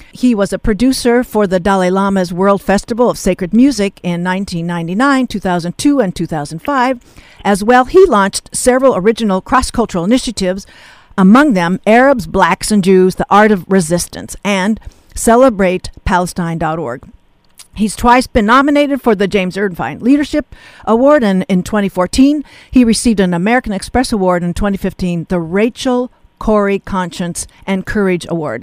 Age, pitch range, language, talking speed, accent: 50-69, 185-235 Hz, English, 140 wpm, American